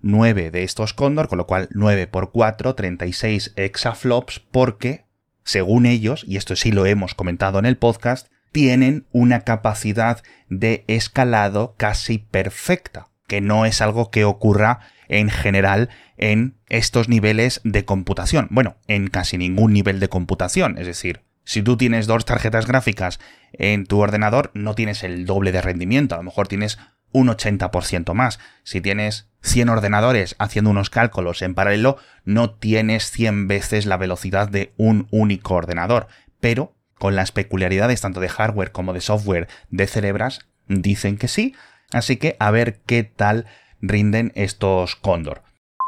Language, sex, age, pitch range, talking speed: Spanish, male, 30-49, 100-120 Hz, 155 wpm